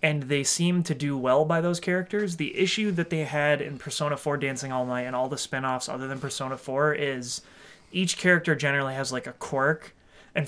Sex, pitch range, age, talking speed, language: male, 135-170 Hz, 30-49, 210 wpm, English